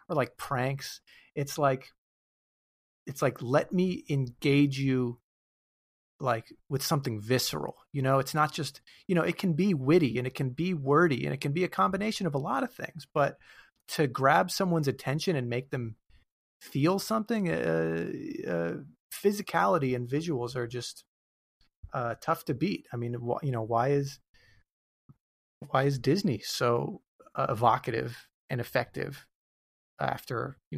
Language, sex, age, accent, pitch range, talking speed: English, male, 30-49, American, 120-150 Hz, 155 wpm